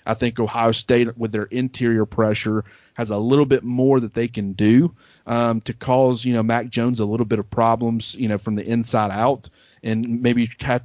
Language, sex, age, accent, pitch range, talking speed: English, male, 30-49, American, 110-120 Hz, 210 wpm